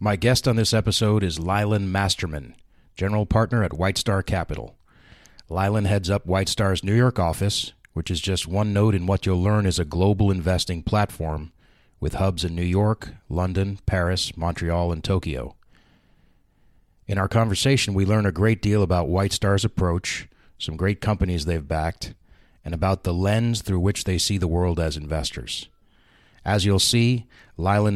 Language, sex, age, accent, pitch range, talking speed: English, male, 30-49, American, 90-105 Hz, 170 wpm